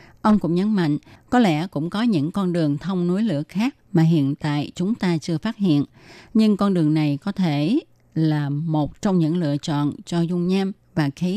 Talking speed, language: 210 wpm, Vietnamese